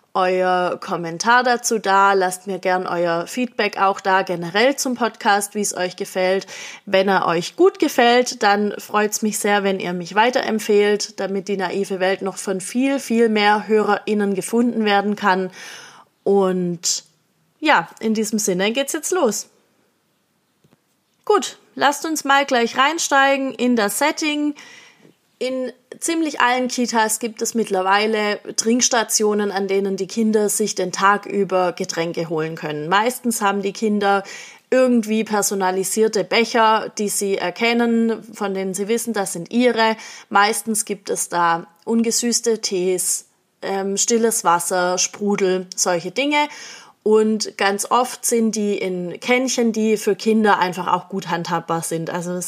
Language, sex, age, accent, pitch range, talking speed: German, female, 30-49, German, 190-230 Hz, 145 wpm